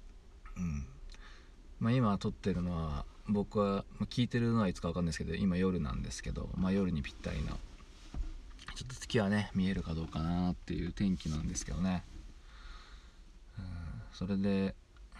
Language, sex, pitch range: Japanese, male, 70-95 Hz